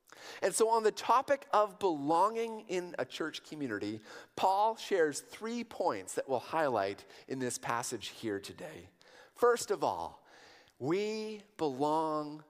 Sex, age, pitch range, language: male, 40-59, 145-220 Hz, English